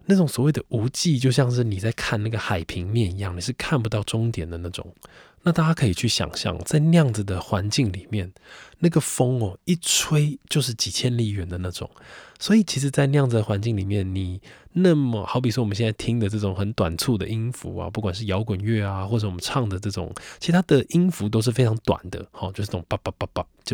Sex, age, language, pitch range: male, 20-39, Chinese, 95-125 Hz